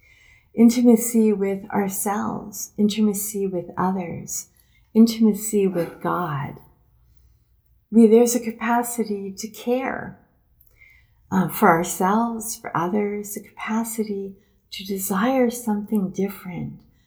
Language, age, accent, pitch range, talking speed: English, 50-69, American, 185-230 Hz, 90 wpm